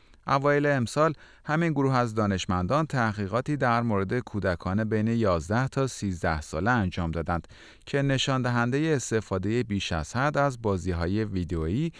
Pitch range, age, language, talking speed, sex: 95-135 Hz, 30-49, Persian, 135 wpm, male